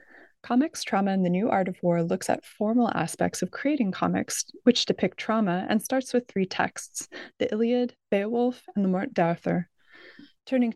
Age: 20-39